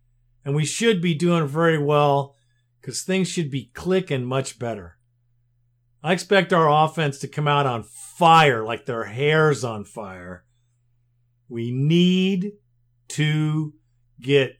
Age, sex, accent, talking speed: 50-69, male, American, 130 wpm